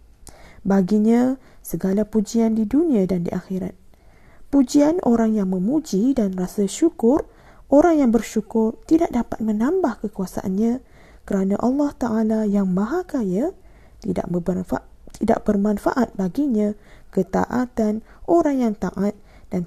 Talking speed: 115 wpm